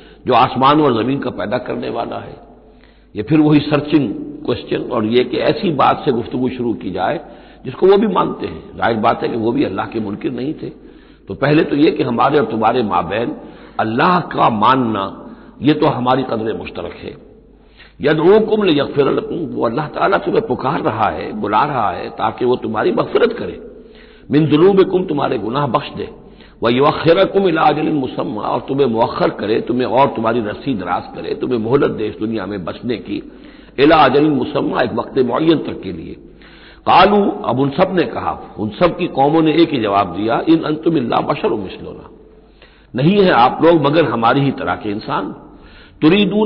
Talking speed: 180 wpm